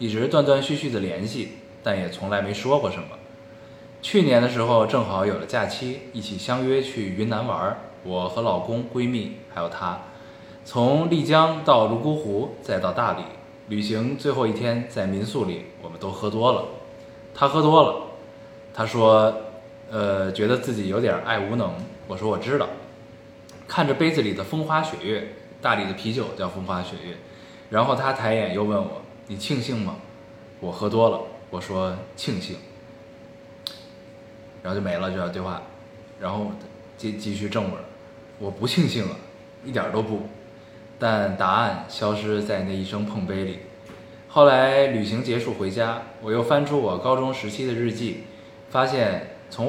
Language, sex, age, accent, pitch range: Chinese, male, 20-39, native, 105-130 Hz